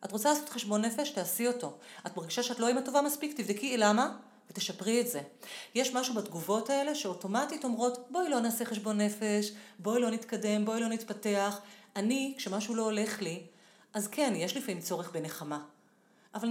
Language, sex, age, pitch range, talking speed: Hebrew, female, 30-49, 205-280 Hz, 175 wpm